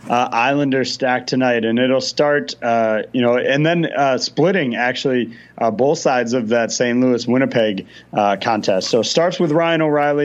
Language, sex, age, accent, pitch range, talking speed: English, male, 30-49, American, 120-140 Hz, 180 wpm